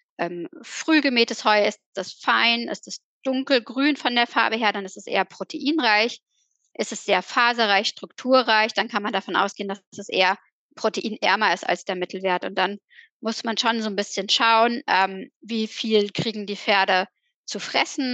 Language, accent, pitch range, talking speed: German, German, 200-250 Hz, 175 wpm